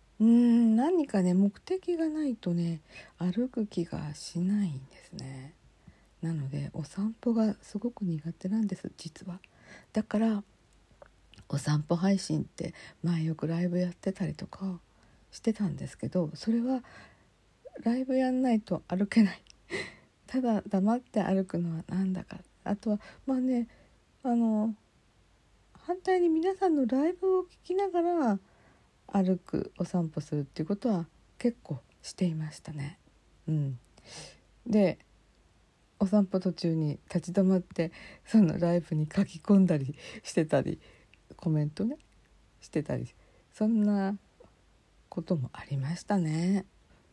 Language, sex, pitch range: Japanese, female, 160-215 Hz